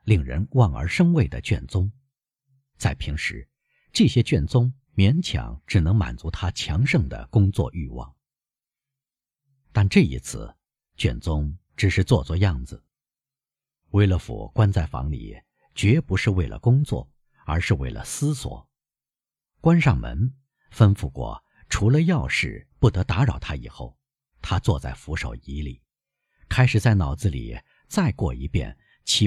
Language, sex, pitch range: Chinese, male, 90-135 Hz